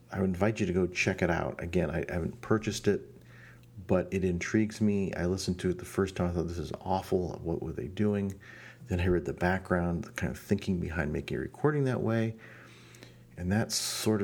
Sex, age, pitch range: male, 40-59, 85-110 Hz